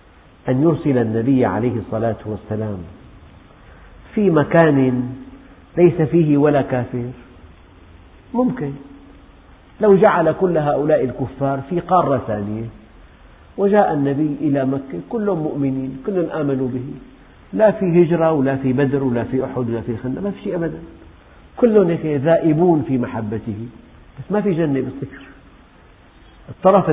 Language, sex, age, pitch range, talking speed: Arabic, male, 50-69, 120-160 Hz, 125 wpm